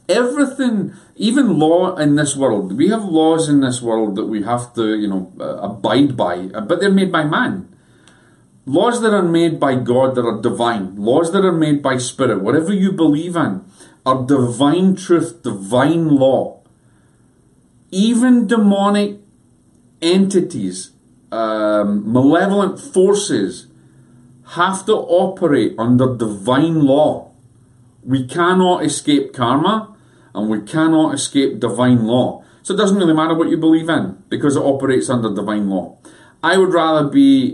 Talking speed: 145 wpm